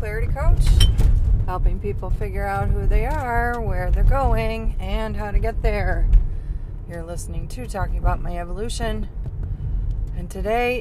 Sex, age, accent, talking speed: female, 30-49, American, 145 wpm